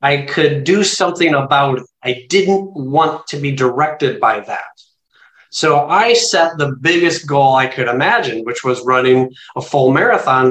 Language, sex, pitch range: English, male, 130-170 Hz